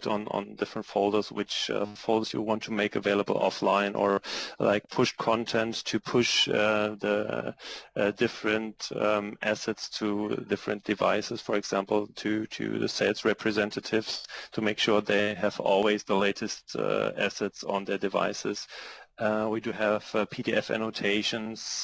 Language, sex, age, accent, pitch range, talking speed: English, male, 30-49, German, 105-115 Hz, 150 wpm